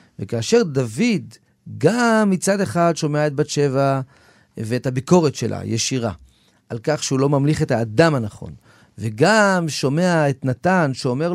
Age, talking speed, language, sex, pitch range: 40-59, 135 wpm, Hebrew, male, 120-180 Hz